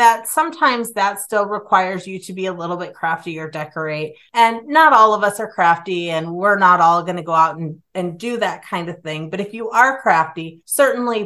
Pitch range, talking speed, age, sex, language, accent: 170-205 Hz, 225 wpm, 30-49, female, English, American